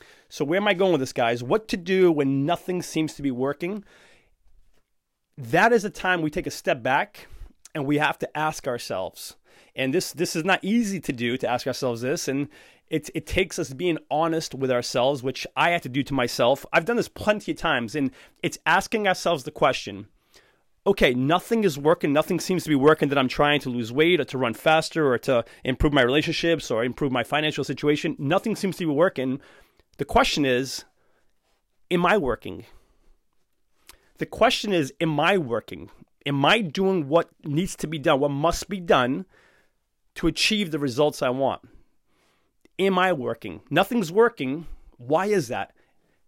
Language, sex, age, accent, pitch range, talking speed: English, male, 30-49, American, 135-175 Hz, 185 wpm